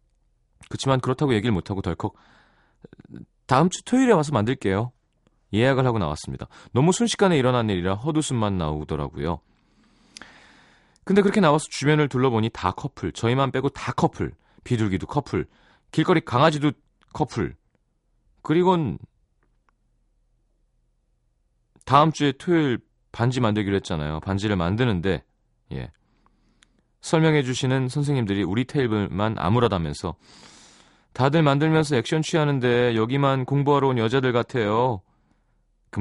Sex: male